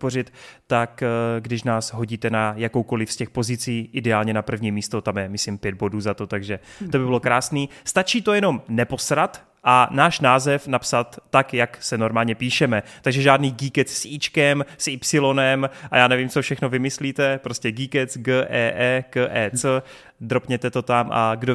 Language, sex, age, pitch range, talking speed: Czech, male, 30-49, 120-145 Hz, 180 wpm